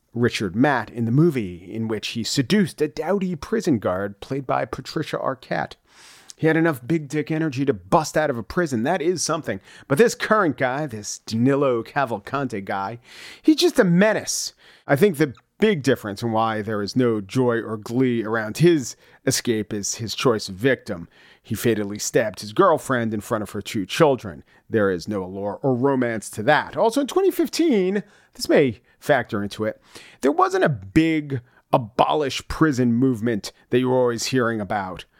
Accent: American